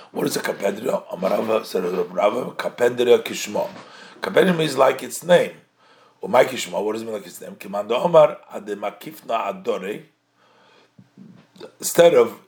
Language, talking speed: English, 145 wpm